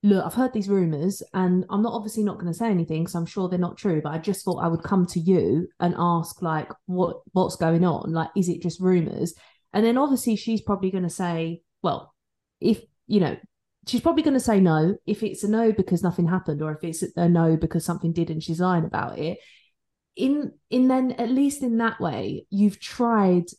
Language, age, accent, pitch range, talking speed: English, 20-39, British, 170-210 Hz, 230 wpm